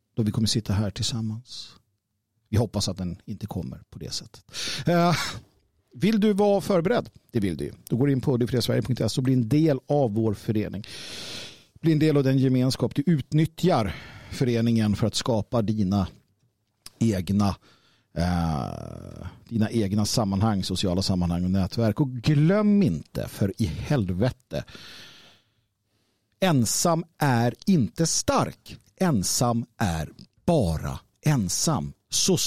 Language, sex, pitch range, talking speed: Swedish, male, 105-140 Hz, 135 wpm